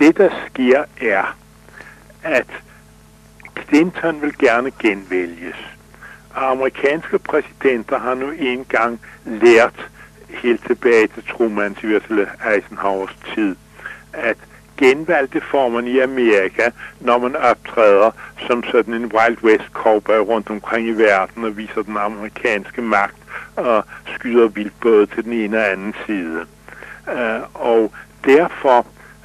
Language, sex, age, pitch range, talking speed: English, male, 60-79, 105-125 Hz, 120 wpm